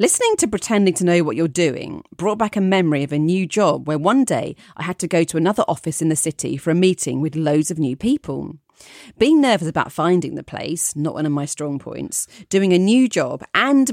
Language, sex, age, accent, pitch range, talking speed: English, female, 40-59, British, 155-210 Hz, 235 wpm